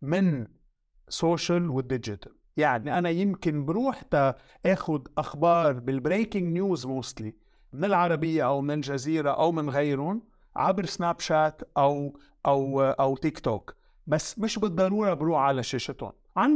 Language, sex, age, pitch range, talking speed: English, male, 50-69, 140-195 Hz, 125 wpm